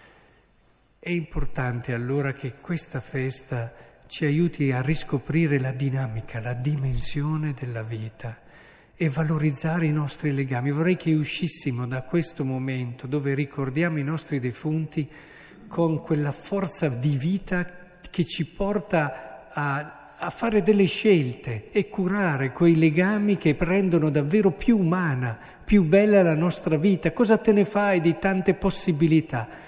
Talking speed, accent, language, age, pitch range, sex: 135 wpm, native, Italian, 50-69, 130-165 Hz, male